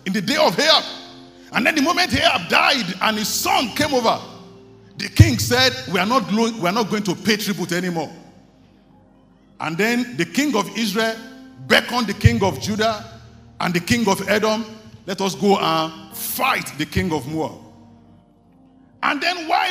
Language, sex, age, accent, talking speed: English, male, 50-69, Nigerian, 170 wpm